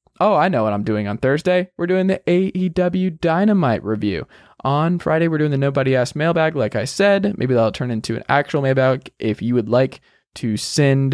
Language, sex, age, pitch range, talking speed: English, male, 20-39, 115-170 Hz, 205 wpm